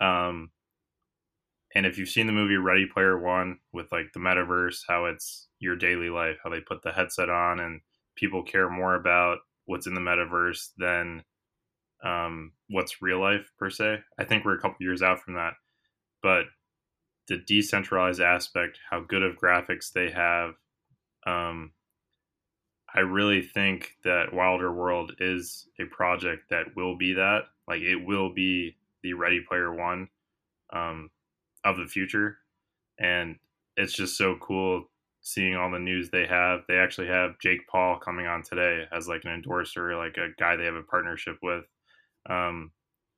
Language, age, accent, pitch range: English, 20-39, American, 85-95 Hz